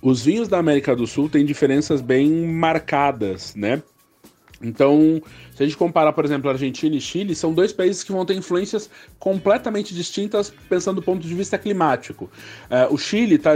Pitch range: 145-190 Hz